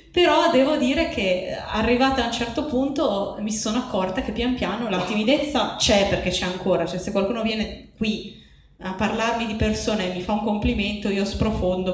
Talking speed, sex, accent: 185 wpm, female, native